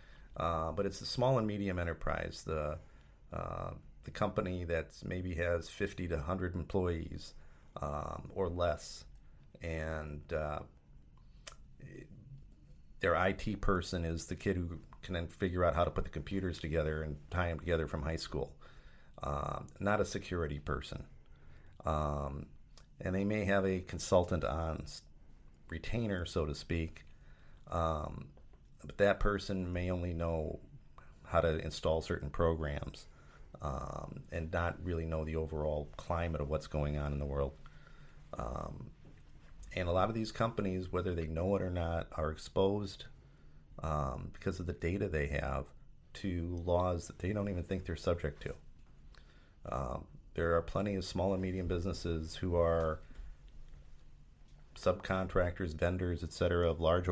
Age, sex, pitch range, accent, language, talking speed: 40-59, male, 75-90 Hz, American, English, 150 wpm